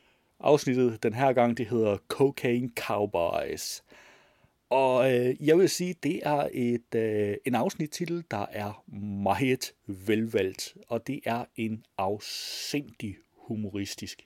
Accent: native